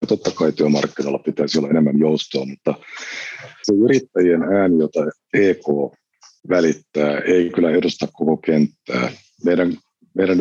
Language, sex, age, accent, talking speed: Finnish, male, 50-69, native, 115 wpm